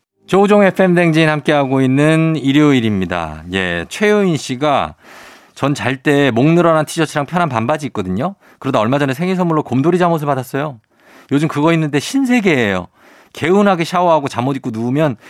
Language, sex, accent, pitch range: Korean, male, native, 105-155 Hz